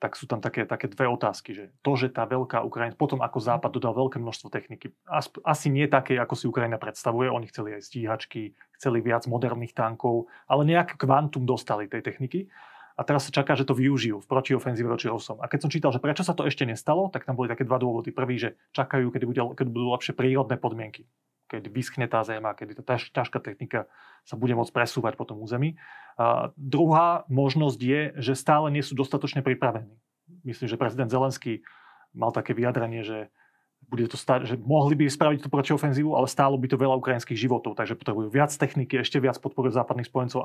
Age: 30-49